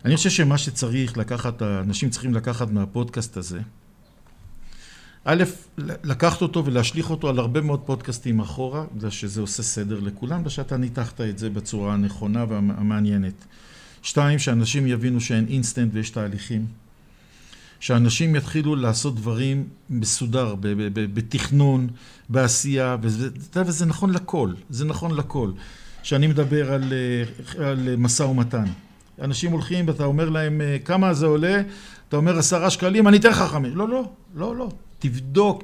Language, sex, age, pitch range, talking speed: Hebrew, male, 50-69, 120-160 Hz, 135 wpm